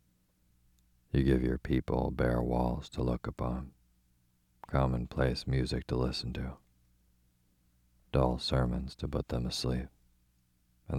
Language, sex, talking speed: English, male, 115 wpm